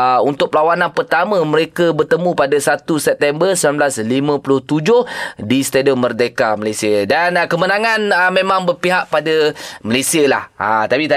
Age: 20-39